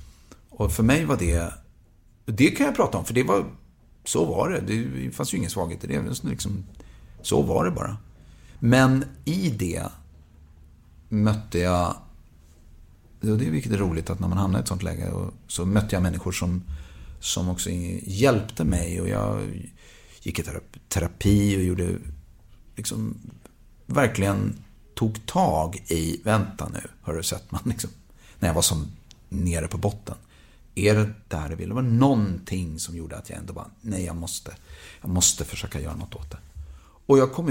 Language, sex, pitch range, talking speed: Swedish, male, 85-110 Hz, 175 wpm